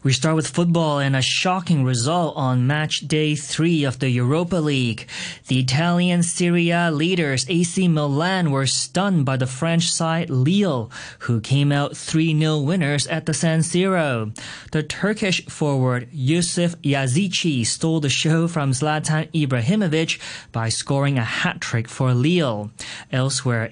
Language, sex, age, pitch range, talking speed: English, male, 20-39, 125-165 Hz, 140 wpm